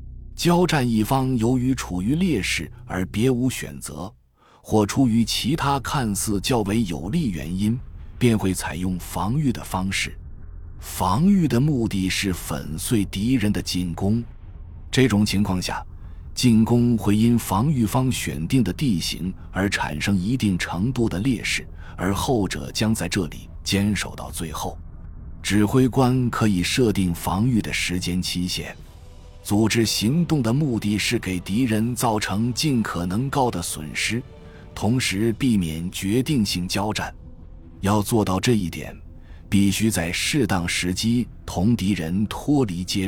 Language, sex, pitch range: Chinese, male, 85-115 Hz